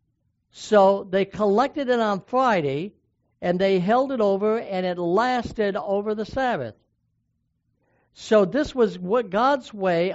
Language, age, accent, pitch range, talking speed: English, 60-79, American, 135-210 Hz, 130 wpm